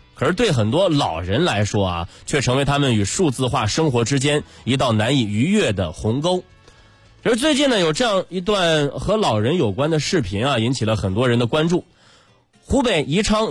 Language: Chinese